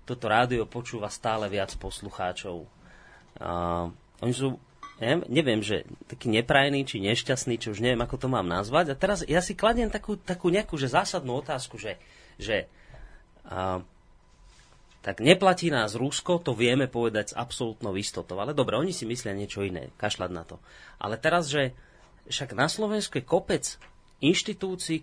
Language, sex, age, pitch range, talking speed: Slovak, male, 30-49, 115-175 Hz, 160 wpm